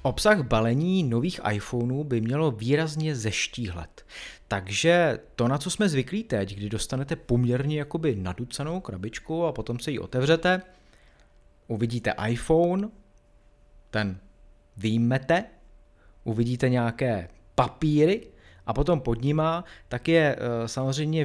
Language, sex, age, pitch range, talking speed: Czech, male, 30-49, 105-160 Hz, 110 wpm